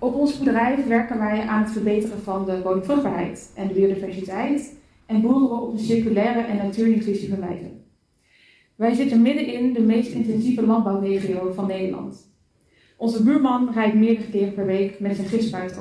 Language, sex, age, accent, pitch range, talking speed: Dutch, female, 20-39, Dutch, 200-235 Hz, 150 wpm